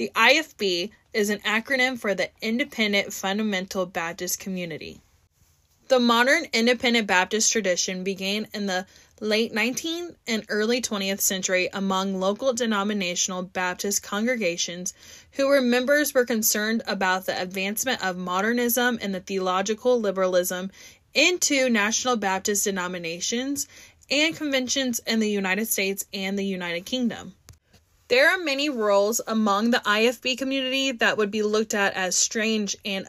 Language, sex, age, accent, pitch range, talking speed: English, female, 20-39, American, 195-250 Hz, 135 wpm